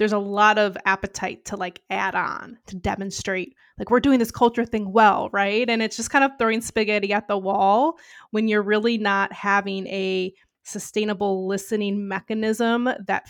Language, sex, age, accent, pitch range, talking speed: English, female, 20-39, American, 200-230 Hz, 175 wpm